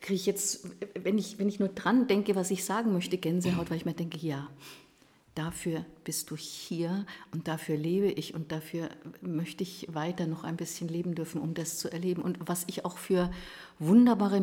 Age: 50-69